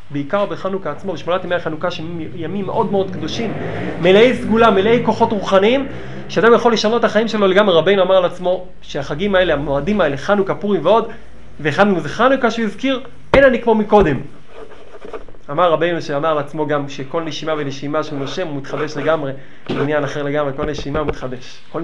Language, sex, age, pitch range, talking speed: Hebrew, male, 30-49, 145-195 Hz, 170 wpm